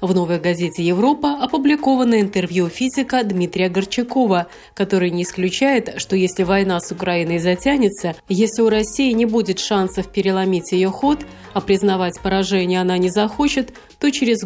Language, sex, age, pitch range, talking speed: Russian, female, 30-49, 185-255 Hz, 145 wpm